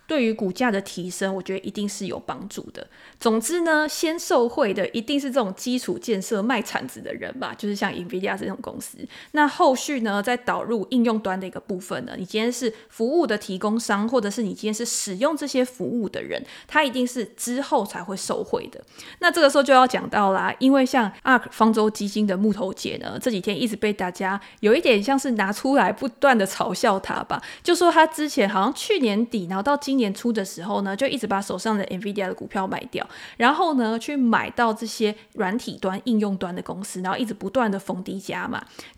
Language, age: Chinese, 20-39